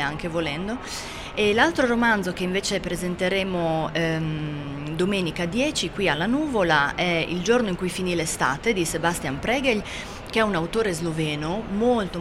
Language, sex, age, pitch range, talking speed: Italian, female, 30-49, 160-205 Hz, 150 wpm